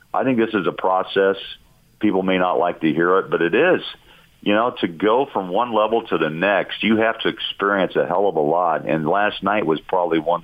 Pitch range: 85-100 Hz